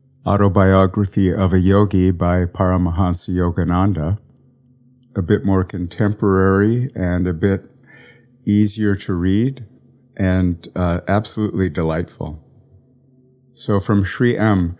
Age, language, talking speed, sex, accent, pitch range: 50-69, English, 100 wpm, male, American, 95-125 Hz